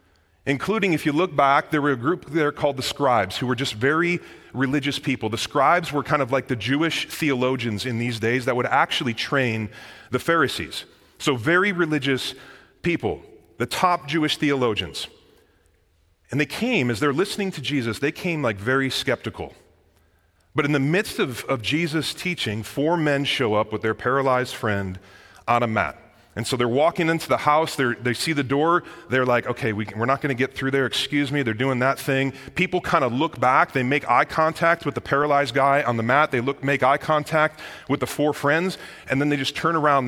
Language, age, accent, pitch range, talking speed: English, 30-49, American, 115-150 Hz, 200 wpm